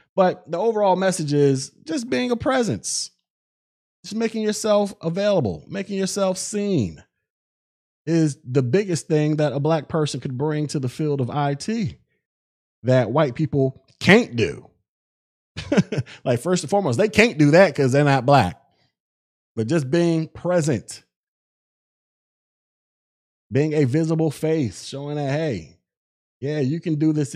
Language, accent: English, American